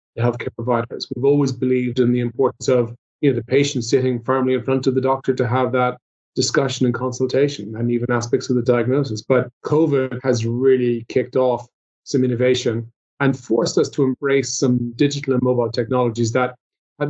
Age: 30-49